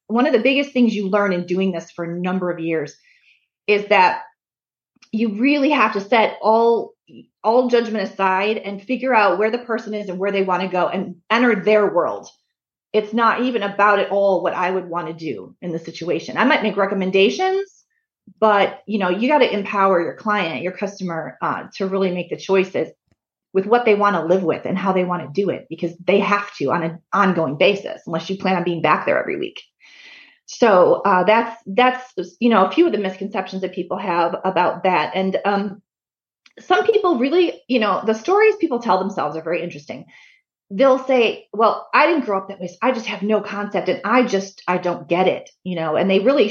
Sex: female